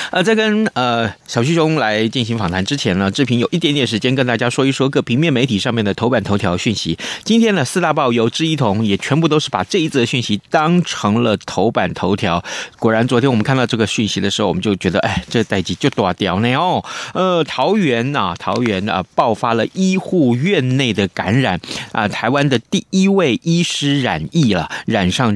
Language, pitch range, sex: Chinese, 115-175 Hz, male